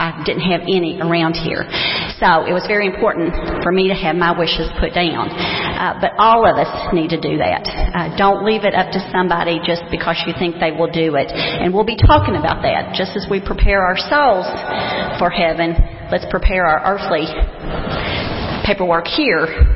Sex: female